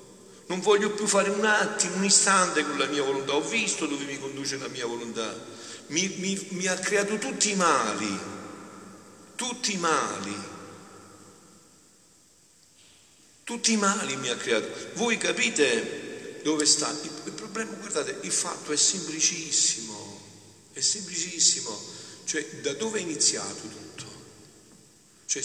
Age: 50-69